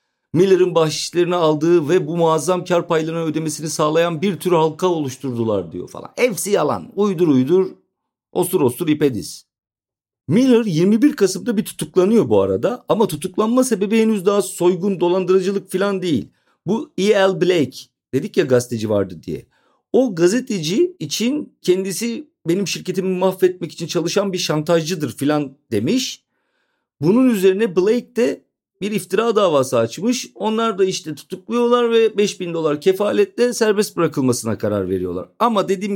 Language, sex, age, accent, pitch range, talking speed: Turkish, male, 50-69, native, 150-220 Hz, 140 wpm